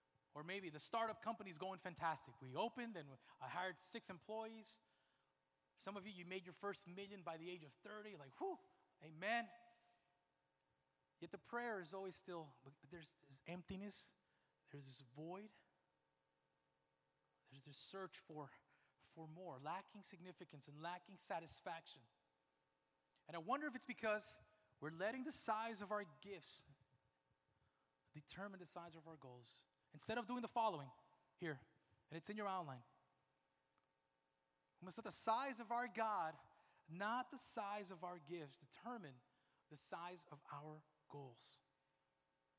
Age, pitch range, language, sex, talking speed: 30-49, 130-210 Hz, English, male, 150 wpm